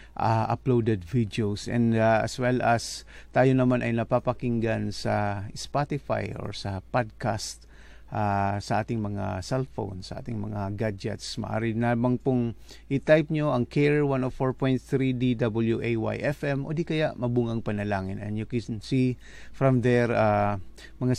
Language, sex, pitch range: English, male, 100-125 Hz